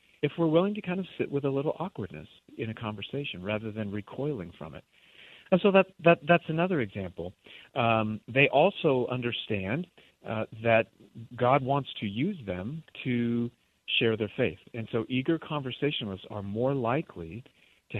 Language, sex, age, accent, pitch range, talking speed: English, male, 50-69, American, 105-140 Hz, 165 wpm